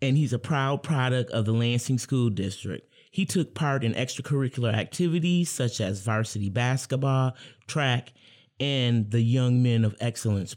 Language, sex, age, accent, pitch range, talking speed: English, male, 30-49, American, 110-130 Hz, 155 wpm